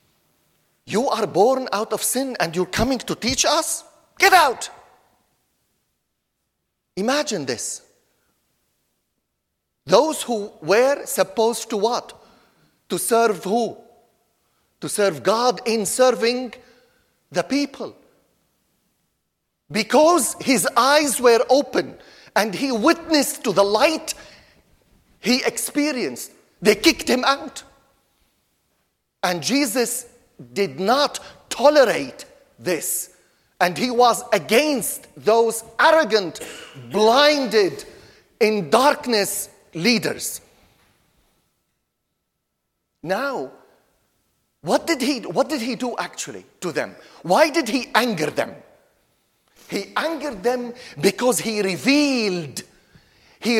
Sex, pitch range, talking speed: male, 205-280 Hz, 100 wpm